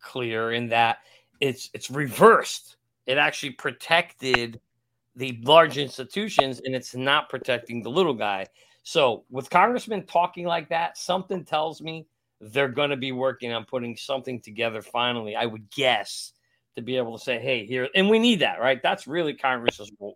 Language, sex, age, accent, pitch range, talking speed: English, male, 40-59, American, 115-145 Hz, 165 wpm